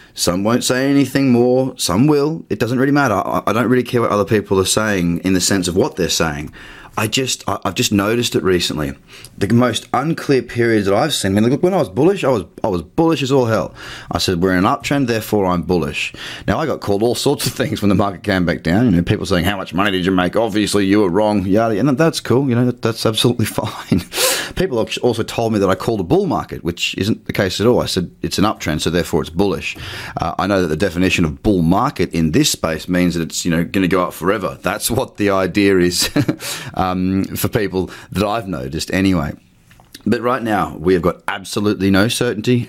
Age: 30-49